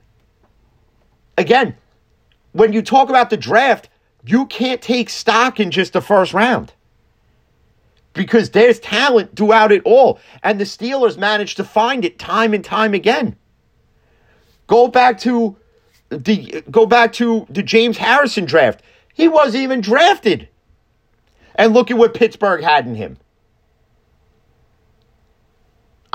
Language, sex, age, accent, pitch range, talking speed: English, male, 40-59, American, 155-230 Hz, 130 wpm